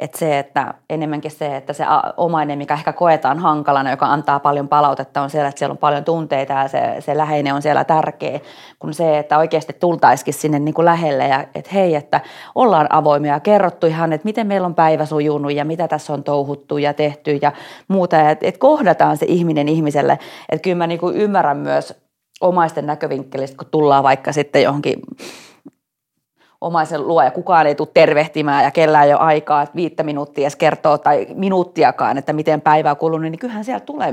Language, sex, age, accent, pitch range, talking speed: Finnish, female, 30-49, native, 145-165 Hz, 190 wpm